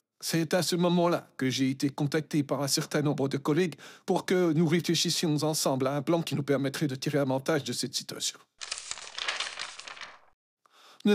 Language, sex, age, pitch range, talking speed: French, male, 50-69, 145-180 Hz, 170 wpm